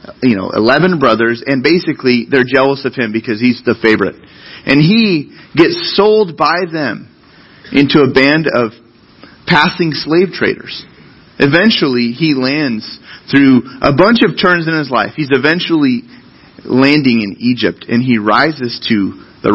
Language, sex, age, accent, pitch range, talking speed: English, male, 30-49, American, 120-165 Hz, 145 wpm